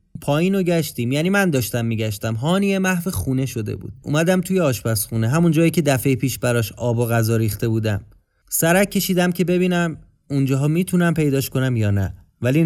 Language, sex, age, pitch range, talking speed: Persian, male, 30-49, 130-180 Hz, 170 wpm